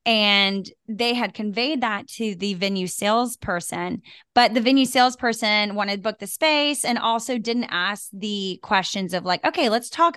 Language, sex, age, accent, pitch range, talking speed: English, female, 10-29, American, 185-230 Hz, 170 wpm